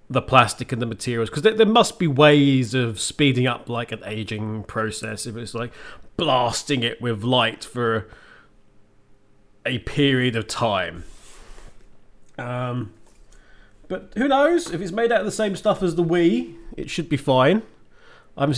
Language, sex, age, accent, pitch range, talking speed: English, male, 30-49, British, 125-185 Hz, 160 wpm